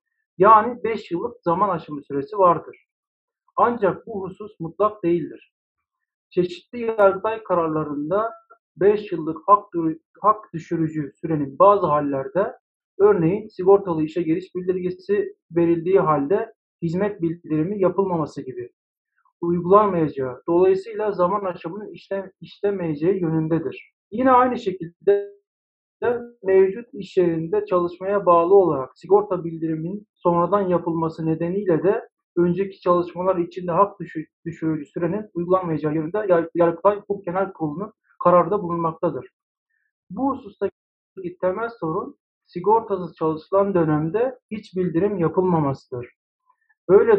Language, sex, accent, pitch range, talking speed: Turkish, male, native, 165-215 Hz, 100 wpm